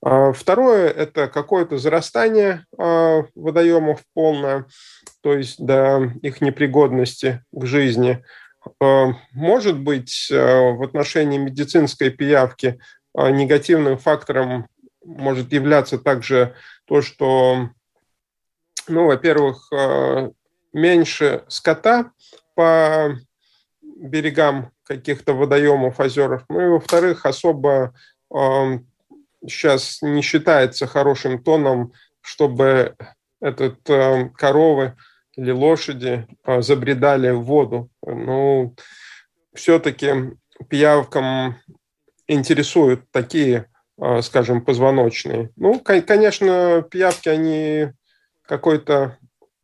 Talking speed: 85 wpm